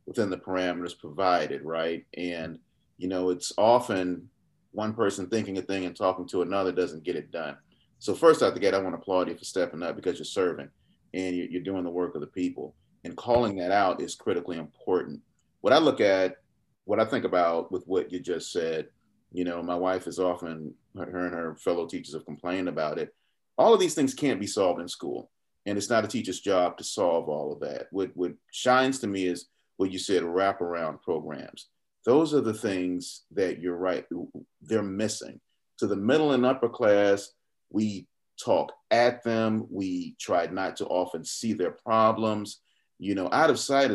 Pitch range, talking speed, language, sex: 90-110 Hz, 200 wpm, English, male